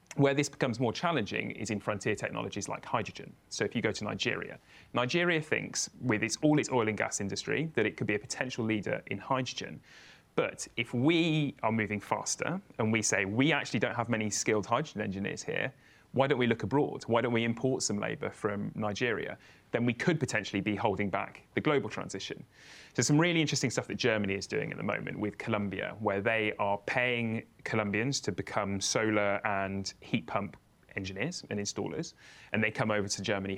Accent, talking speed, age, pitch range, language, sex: British, 195 wpm, 30-49, 100-130 Hz, English, male